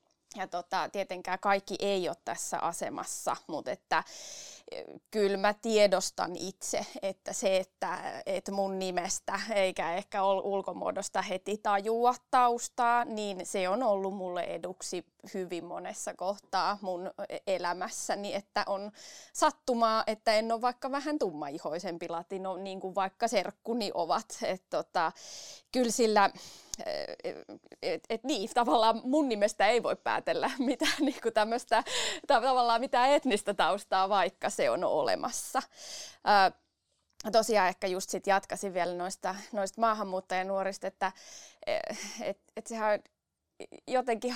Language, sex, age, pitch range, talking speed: Finnish, female, 20-39, 195-245 Hz, 125 wpm